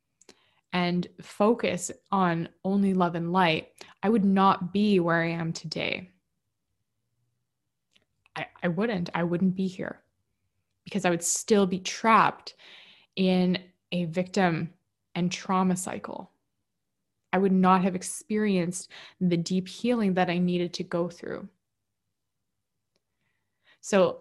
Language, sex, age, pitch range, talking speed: English, female, 20-39, 165-190 Hz, 120 wpm